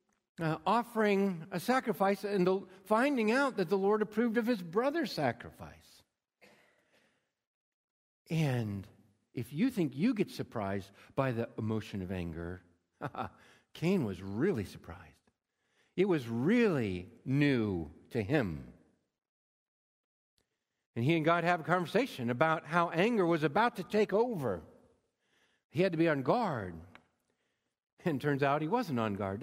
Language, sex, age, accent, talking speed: English, male, 60-79, American, 135 wpm